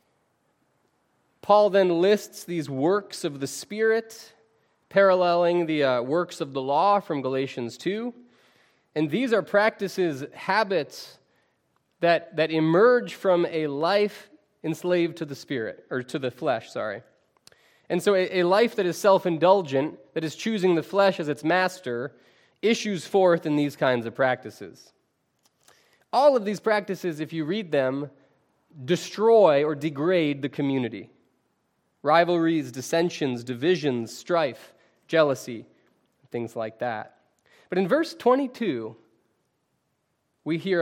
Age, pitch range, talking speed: 20-39, 145-205 Hz, 130 wpm